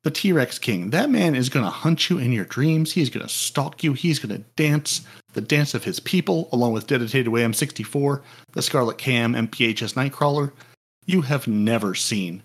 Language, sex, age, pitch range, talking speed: English, male, 40-59, 120-155 Hz, 200 wpm